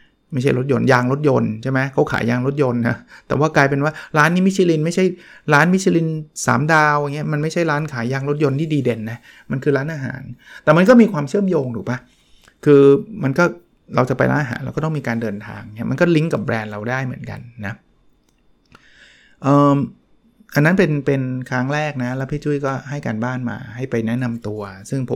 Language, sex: Thai, male